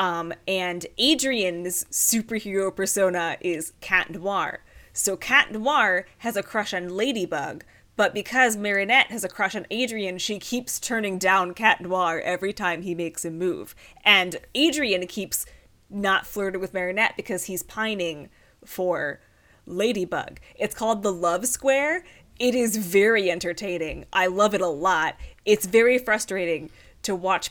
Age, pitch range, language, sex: 20-39, 180-220 Hz, English, female